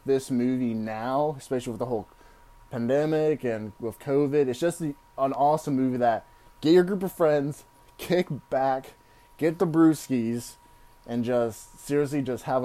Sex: male